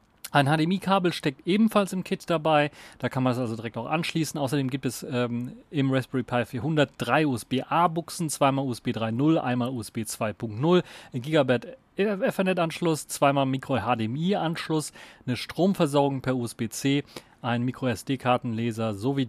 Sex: male